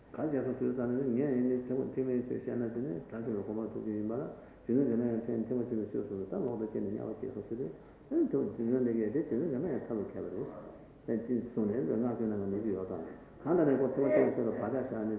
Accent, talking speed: Indian, 40 wpm